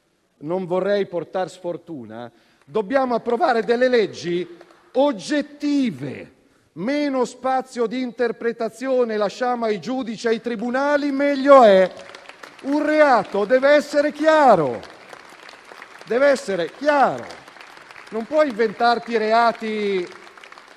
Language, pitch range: Italian, 195-245 Hz